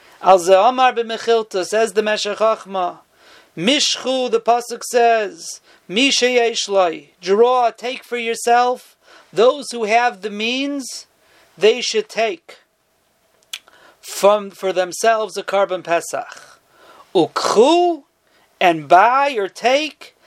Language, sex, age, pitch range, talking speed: English, male, 40-59, 210-250 Hz, 95 wpm